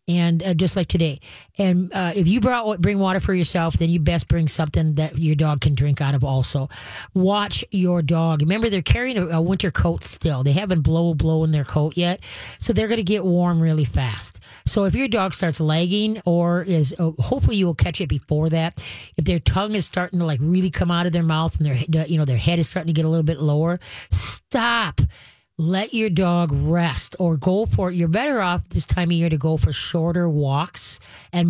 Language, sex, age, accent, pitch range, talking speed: English, female, 30-49, American, 150-185 Hz, 225 wpm